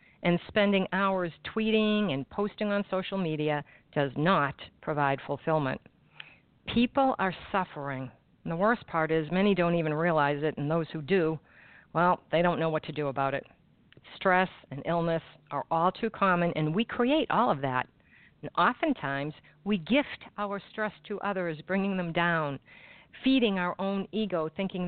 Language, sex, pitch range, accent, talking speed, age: English, female, 155-195 Hz, American, 165 wpm, 50-69